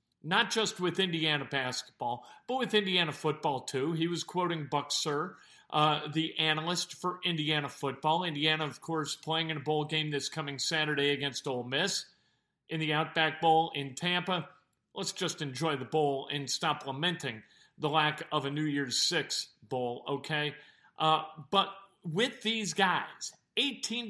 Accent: American